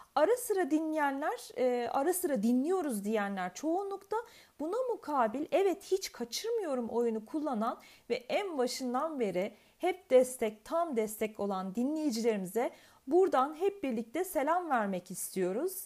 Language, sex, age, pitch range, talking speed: Turkish, female, 40-59, 225-315 Hz, 120 wpm